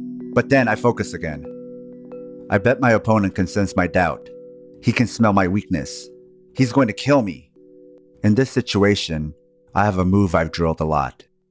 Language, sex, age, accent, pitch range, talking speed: English, male, 30-49, American, 90-120 Hz, 175 wpm